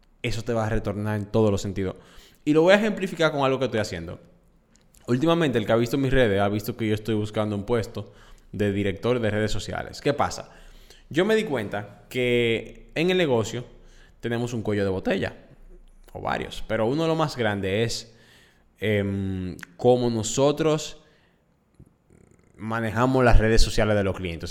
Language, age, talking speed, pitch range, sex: Spanish, 10-29, 180 wpm, 100-145 Hz, male